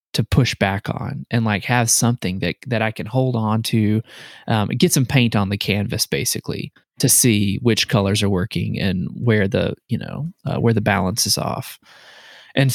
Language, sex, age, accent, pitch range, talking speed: English, male, 20-39, American, 105-130 Hz, 195 wpm